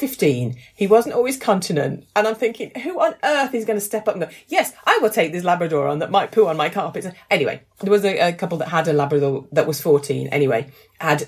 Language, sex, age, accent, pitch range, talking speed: English, female, 40-59, British, 145-210 Hz, 245 wpm